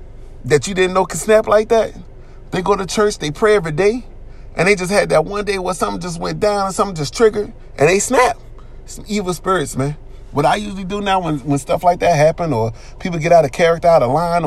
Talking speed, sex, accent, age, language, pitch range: 245 wpm, male, American, 30-49, English, 125-170 Hz